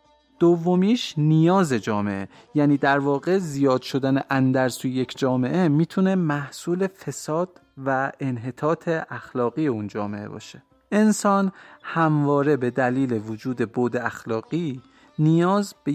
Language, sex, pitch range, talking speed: Persian, male, 125-155 Hz, 110 wpm